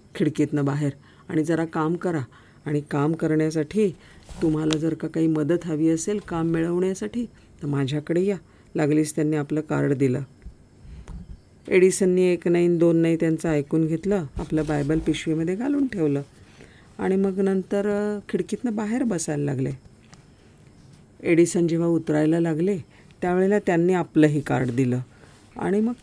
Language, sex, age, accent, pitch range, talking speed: Marathi, female, 40-59, native, 150-190 Hz, 115 wpm